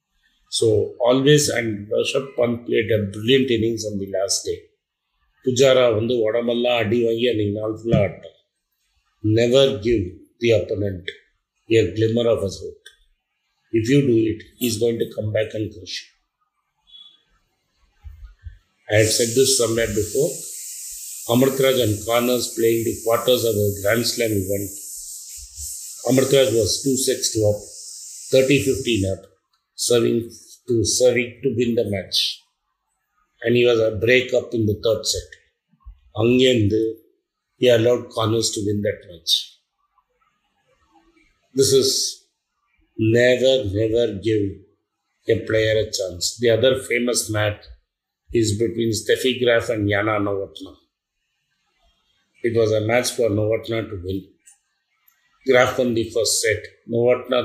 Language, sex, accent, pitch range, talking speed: Tamil, male, native, 105-130 Hz, 130 wpm